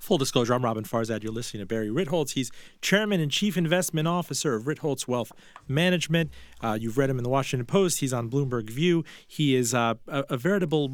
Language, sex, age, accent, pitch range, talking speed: English, male, 40-59, American, 125-170 Hz, 210 wpm